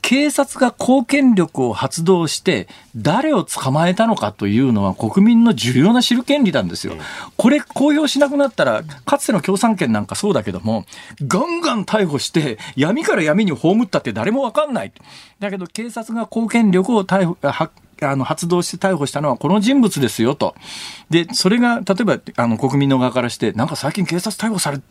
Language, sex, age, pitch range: Japanese, male, 40-59, 140-225 Hz